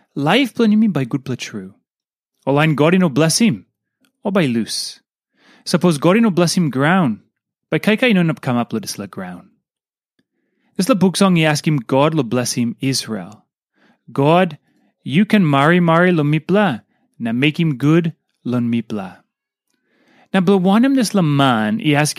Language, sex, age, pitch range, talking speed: English, male, 30-49, 135-195 Hz, 195 wpm